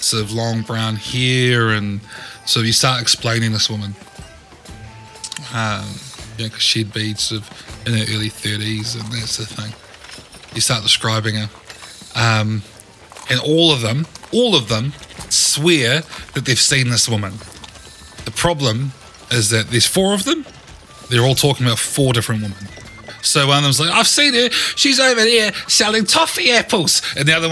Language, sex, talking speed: English, male, 160 wpm